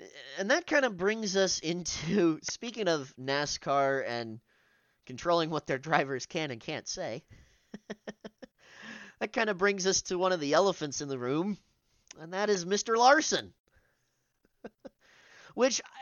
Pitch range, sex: 130-190 Hz, male